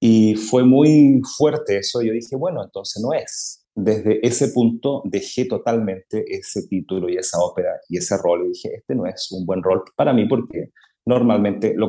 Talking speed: 185 wpm